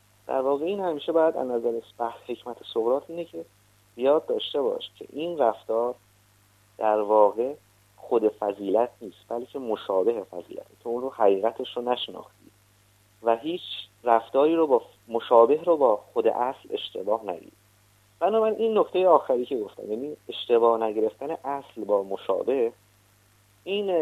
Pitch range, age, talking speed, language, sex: 105-160 Hz, 30-49, 140 wpm, Persian, male